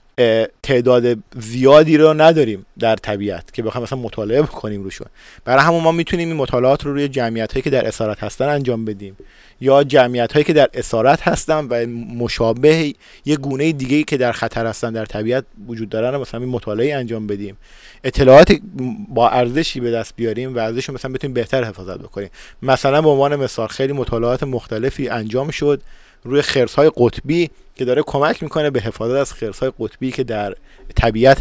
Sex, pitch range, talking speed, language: male, 115-140 Hz, 175 wpm, English